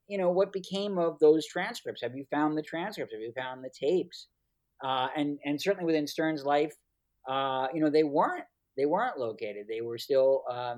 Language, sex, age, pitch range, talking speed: English, male, 40-59, 130-165 Hz, 200 wpm